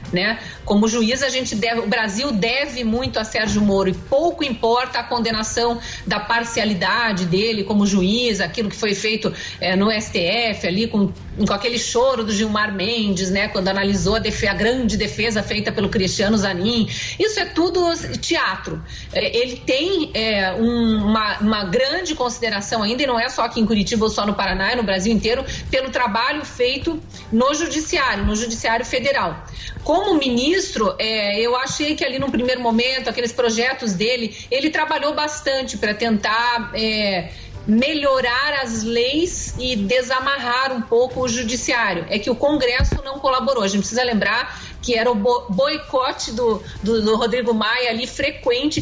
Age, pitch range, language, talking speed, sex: 40-59, 215-260 Hz, English, 160 wpm, female